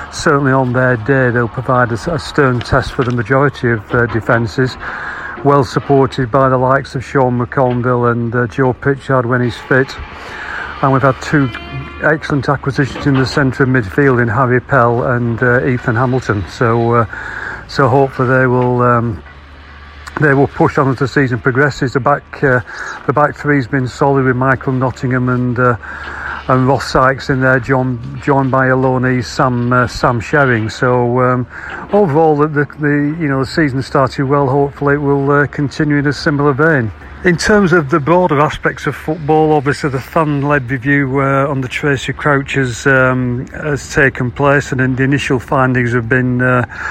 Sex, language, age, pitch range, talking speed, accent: male, English, 40-59, 125-140 Hz, 180 wpm, British